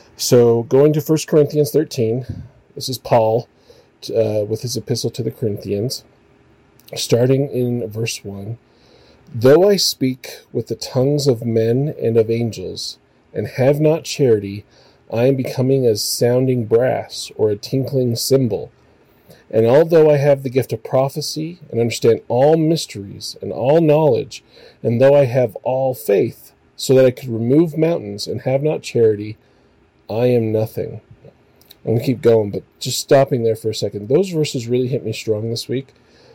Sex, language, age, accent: male, English, 40-59, American